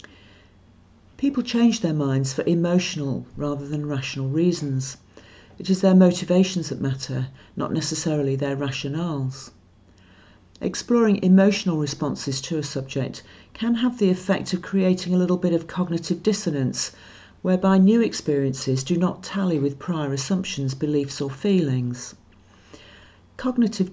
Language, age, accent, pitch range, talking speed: English, 50-69, British, 130-180 Hz, 130 wpm